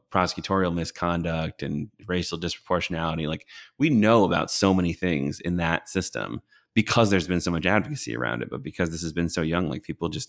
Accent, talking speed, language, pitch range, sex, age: American, 190 wpm, English, 80-95 Hz, male, 30-49